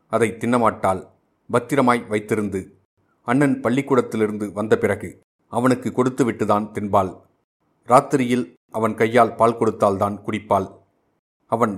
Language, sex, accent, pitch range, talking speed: Tamil, male, native, 100-120 Hz, 90 wpm